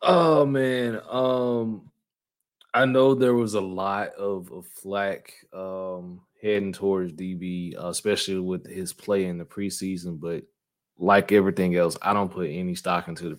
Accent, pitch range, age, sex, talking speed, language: American, 95-115 Hz, 20-39, male, 150 wpm, English